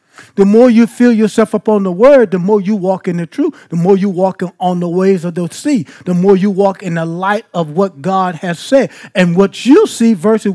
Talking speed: 240 wpm